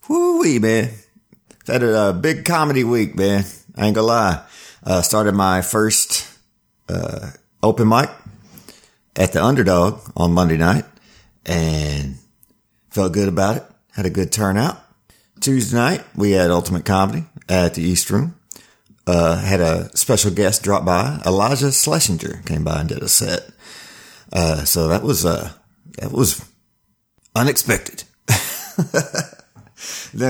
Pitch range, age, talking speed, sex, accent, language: 85-115 Hz, 40-59, 140 wpm, male, American, English